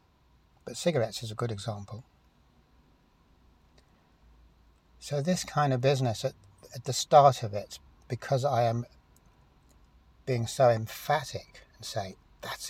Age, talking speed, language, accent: 60-79, 125 wpm, English, British